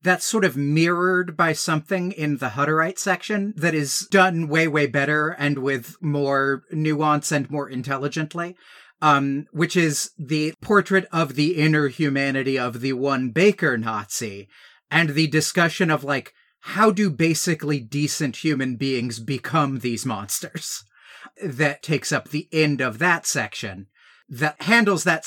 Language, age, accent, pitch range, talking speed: English, 30-49, American, 135-175 Hz, 145 wpm